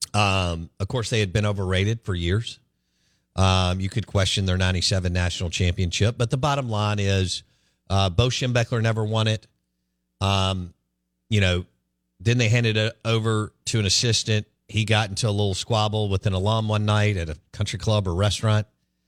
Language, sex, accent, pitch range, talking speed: English, male, American, 90-115 Hz, 175 wpm